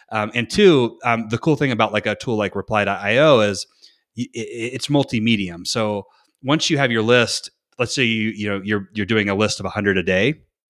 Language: English